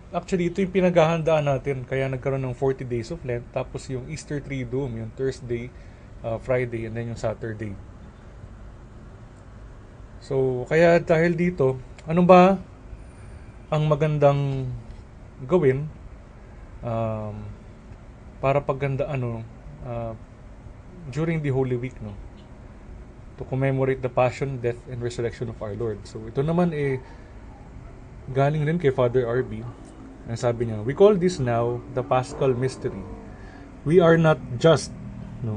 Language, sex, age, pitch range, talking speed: Filipino, male, 20-39, 115-140 Hz, 125 wpm